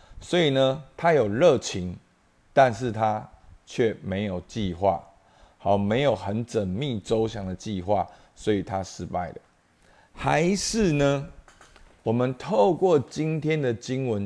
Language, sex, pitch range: Chinese, male, 95-130 Hz